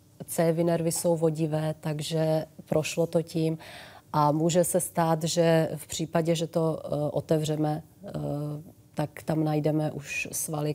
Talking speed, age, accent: 130 wpm, 30-49, native